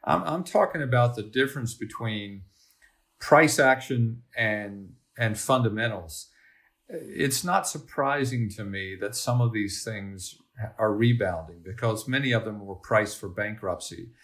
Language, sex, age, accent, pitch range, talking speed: English, male, 50-69, American, 105-130 Hz, 130 wpm